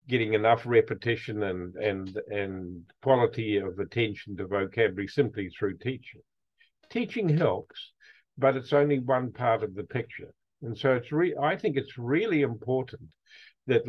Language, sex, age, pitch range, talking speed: English, male, 50-69, 110-140 Hz, 145 wpm